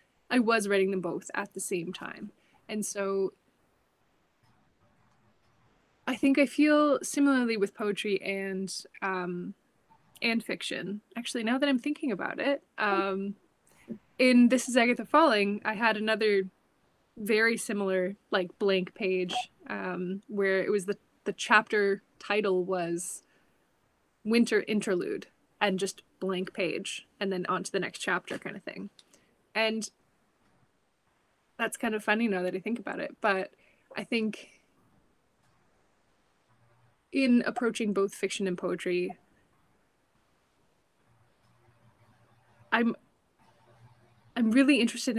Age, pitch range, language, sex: 20-39, 185-230 Hz, English, female